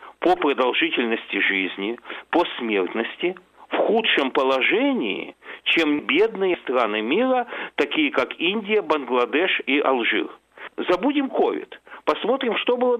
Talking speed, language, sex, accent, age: 105 wpm, Russian, male, native, 50-69